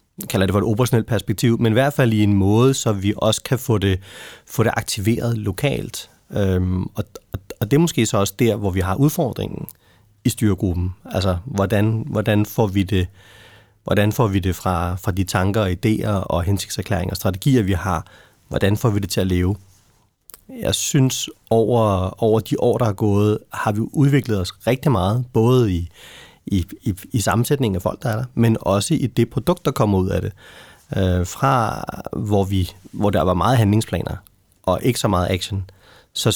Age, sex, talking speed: 30-49, male, 185 wpm